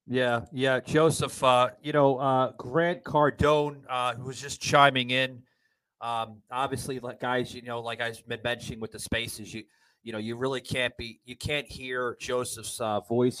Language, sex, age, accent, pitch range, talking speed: English, male, 30-49, American, 110-145 Hz, 185 wpm